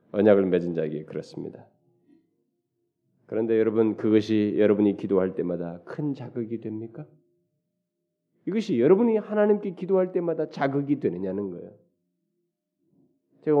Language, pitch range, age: Korean, 105-155 Hz, 40-59